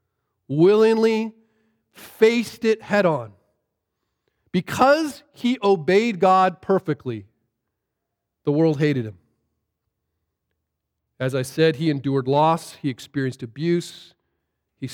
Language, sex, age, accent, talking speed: English, male, 40-59, American, 95 wpm